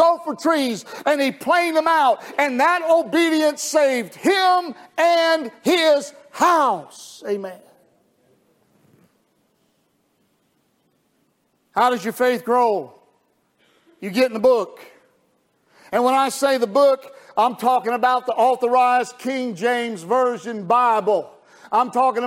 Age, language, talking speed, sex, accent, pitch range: 50-69, English, 115 wpm, male, American, 240-275 Hz